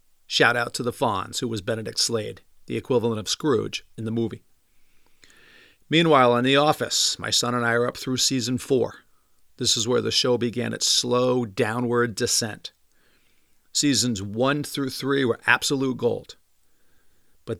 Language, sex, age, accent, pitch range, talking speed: English, male, 50-69, American, 110-130 Hz, 160 wpm